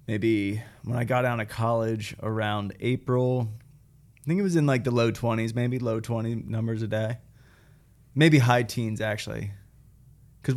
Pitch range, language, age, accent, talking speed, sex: 115-135 Hz, English, 20-39, American, 165 wpm, male